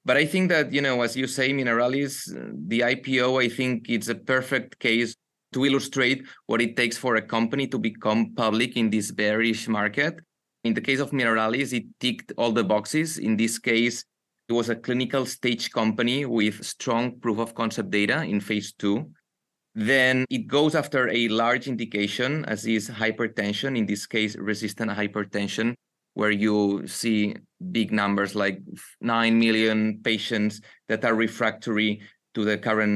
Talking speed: 165 wpm